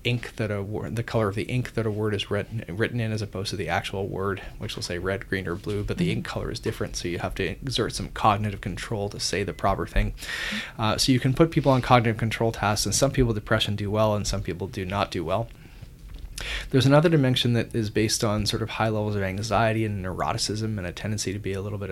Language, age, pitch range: English, 30-49, 95-115 Hz